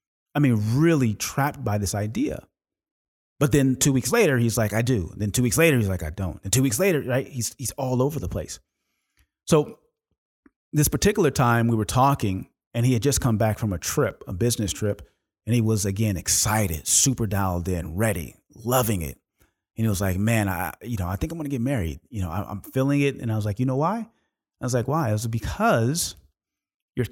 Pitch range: 100-130 Hz